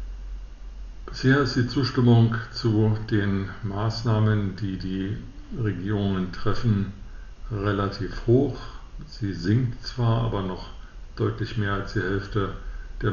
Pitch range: 95-115 Hz